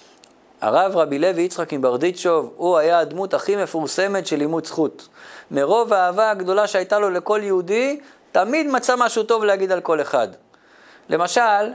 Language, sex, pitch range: Hebrew, male, 180-230 Hz